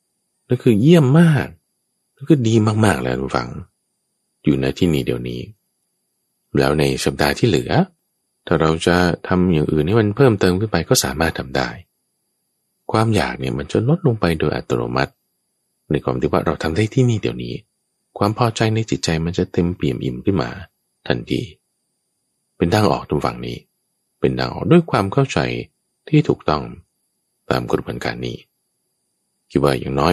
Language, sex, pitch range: Thai, male, 65-105 Hz